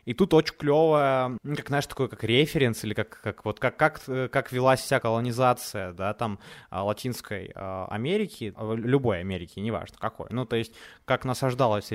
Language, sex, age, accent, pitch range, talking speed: Ukrainian, male, 20-39, native, 110-150 Hz, 160 wpm